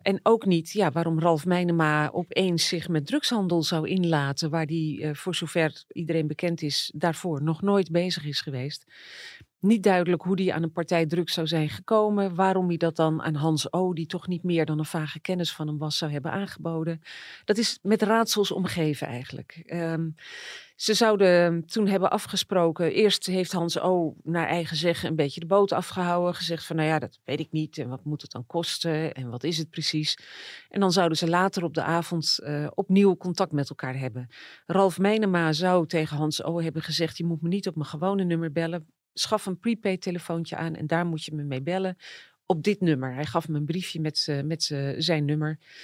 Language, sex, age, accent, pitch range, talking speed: Dutch, female, 40-59, Dutch, 155-185 Hz, 205 wpm